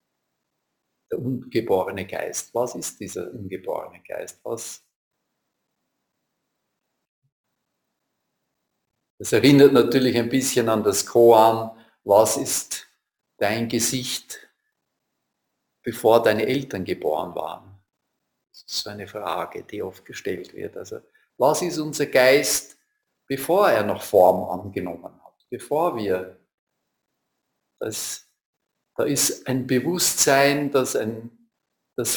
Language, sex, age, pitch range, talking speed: German, male, 50-69, 115-140 Hz, 105 wpm